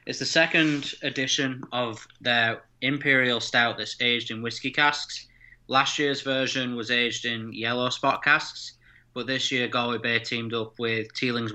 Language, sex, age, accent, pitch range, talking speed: English, male, 20-39, British, 110-120 Hz, 160 wpm